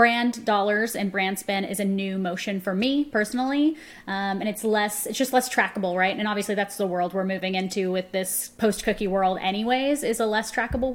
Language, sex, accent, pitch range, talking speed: English, female, American, 190-220 Hz, 210 wpm